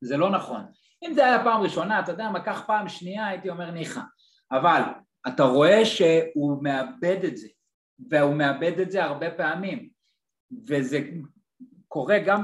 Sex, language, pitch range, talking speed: male, Hebrew, 165-215 Hz, 160 wpm